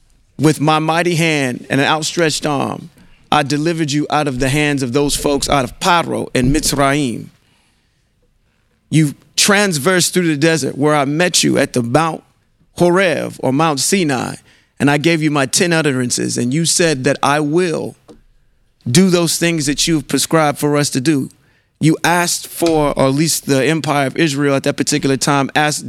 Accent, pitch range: American, 135-170 Hz